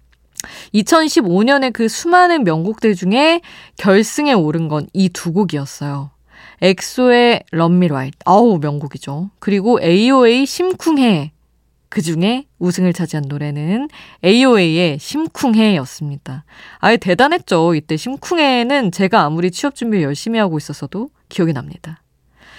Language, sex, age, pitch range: Korean, female, 20-39, 155-235 Hz